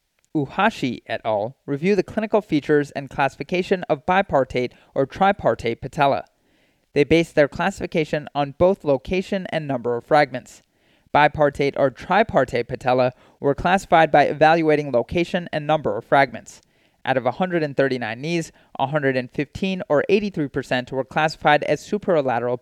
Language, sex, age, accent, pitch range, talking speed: English, male, 30-49, American, 135-175 Hz, 135 wpm